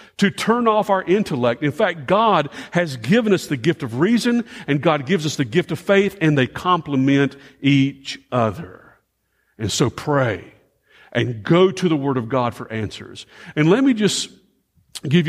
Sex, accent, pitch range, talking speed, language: male, American, 135-185 Hz, 175 wpm, English